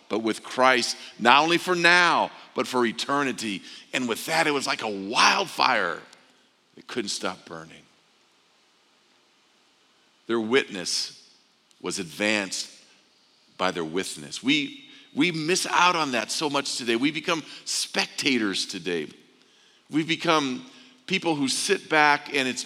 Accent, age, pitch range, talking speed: American, 50-69, 115-165 Hz, 130 wpm